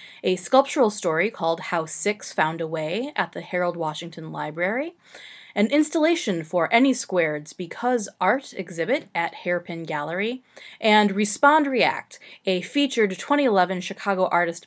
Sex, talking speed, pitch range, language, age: female, 135 wpm, 170-240 Hz, English, 30-49